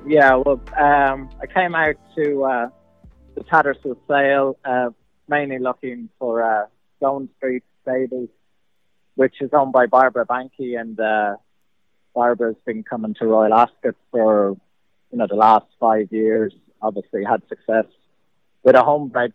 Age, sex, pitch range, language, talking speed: 30-49, male, 110-130 Hz, English, 145 wpm